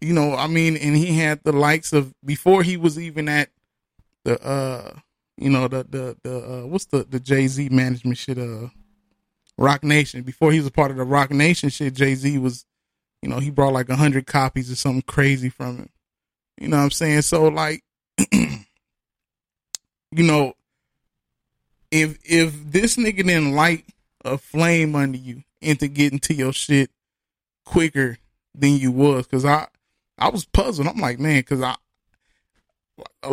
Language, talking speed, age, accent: English, 175 wpm, 20-39, American